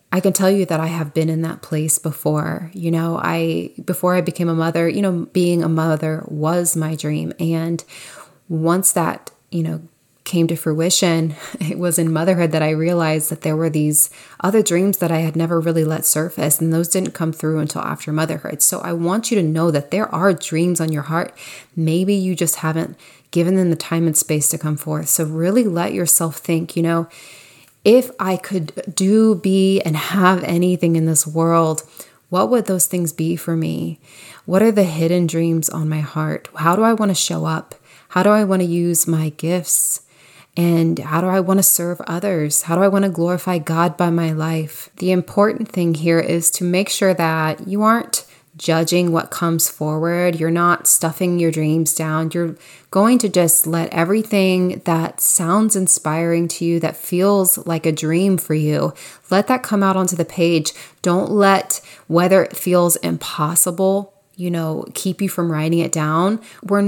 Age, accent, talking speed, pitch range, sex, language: 20-39, American, 195 wpm, 160-185 Hz, female, English